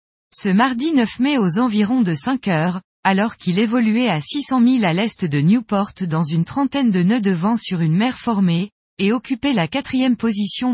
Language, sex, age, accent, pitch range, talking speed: French, female, 20-39, French, 180-245 Hz, 195 wpm